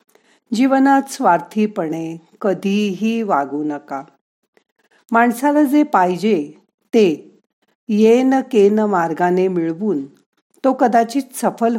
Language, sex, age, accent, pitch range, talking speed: Marathi, female, 50-69, native, 170-235 Hz, 85 wpm